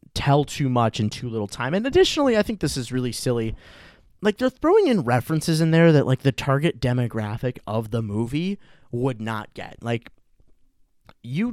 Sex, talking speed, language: male, 180 wpm, English